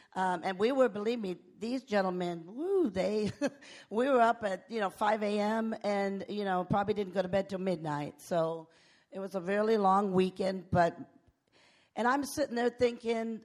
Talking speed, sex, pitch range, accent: 185 wpm, female, 185-240 Hz, American